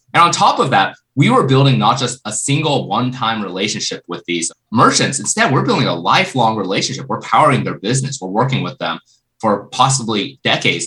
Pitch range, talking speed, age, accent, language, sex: 105-135 Hz, 190 wpm, 20-39, American, English, male